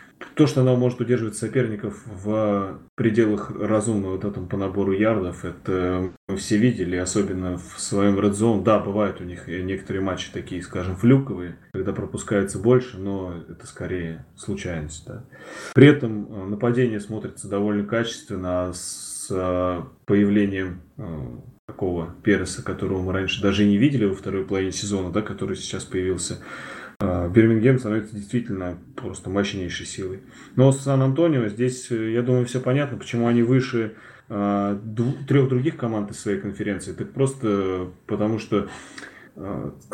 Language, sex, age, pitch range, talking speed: Russian, male, 20-39, 95-115 Hz, 140 wpm